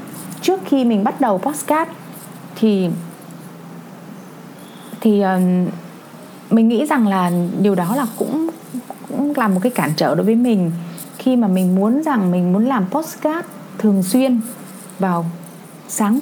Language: Vietnamese